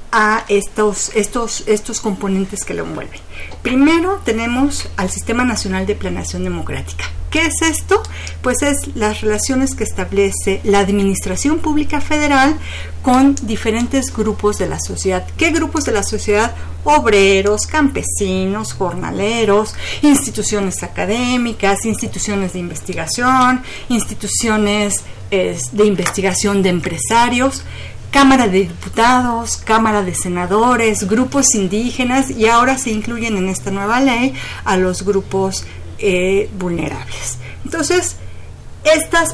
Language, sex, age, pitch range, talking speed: Spanish, female, 40-59, 200-275 Hz, 115 wpm